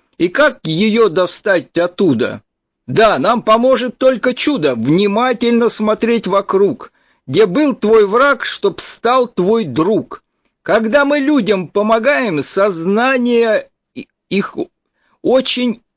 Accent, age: native, 50-69